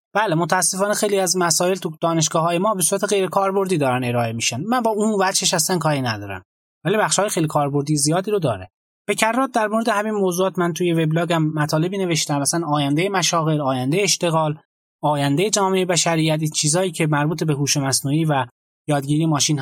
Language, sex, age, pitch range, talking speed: Persian, male, 20-39, 140-190 Hz, 180 wpm